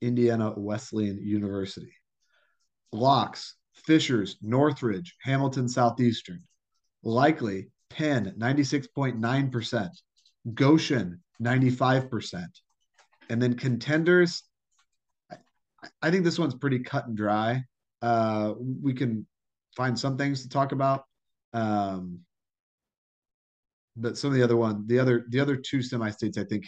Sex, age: male, 40-59